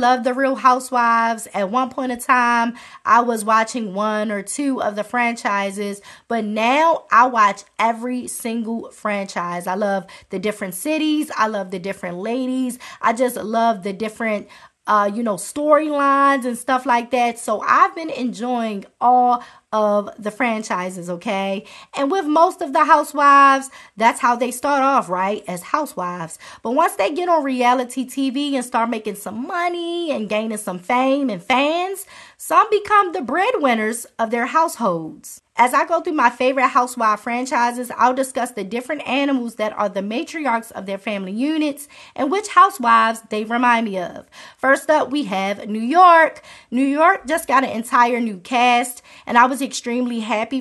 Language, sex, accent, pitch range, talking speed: English, female, American, 215-275 Hz, 170 wpm